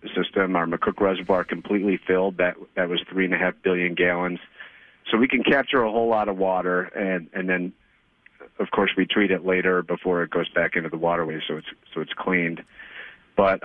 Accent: American